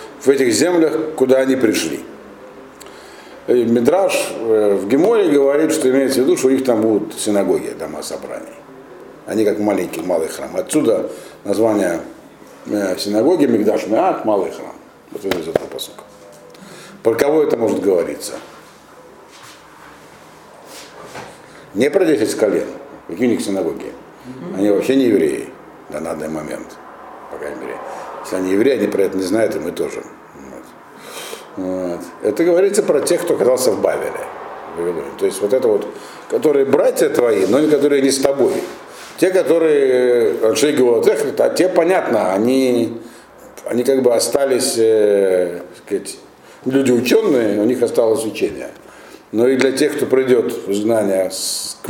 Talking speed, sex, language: 145 wpm, male, Russian